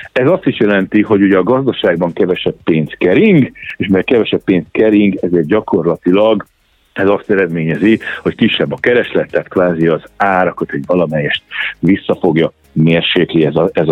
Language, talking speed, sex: Hungarian, 155 wpm, male